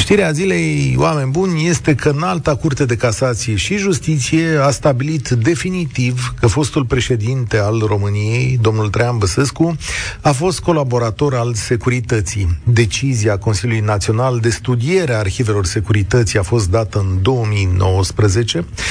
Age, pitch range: 40-59, 110-150 Hz